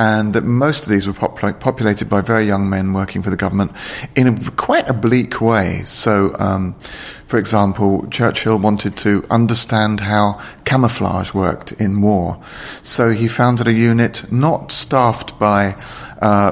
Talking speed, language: 155 wpm, English